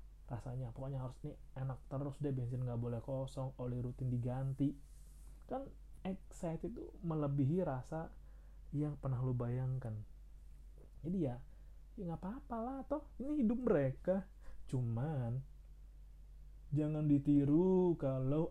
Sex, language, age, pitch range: male, Indonesian, 20-39, 120-165 Hz